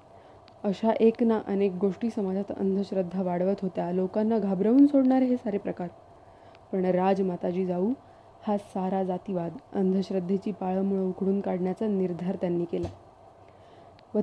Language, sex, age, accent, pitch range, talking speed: Marathi, female, 20-39, native, 190-225 Hz, 120 wpm